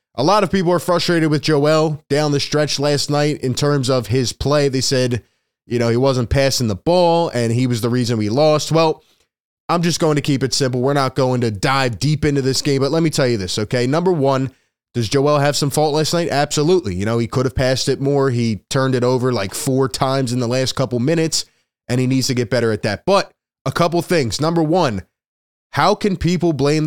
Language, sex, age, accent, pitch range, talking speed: English, male, 20-39, American, 125-150 Hz, 235 wpm